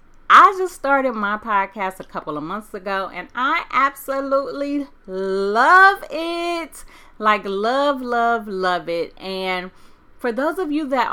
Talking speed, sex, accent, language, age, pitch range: 140 wpm, female, American, English, 30-49, 190-290 Hz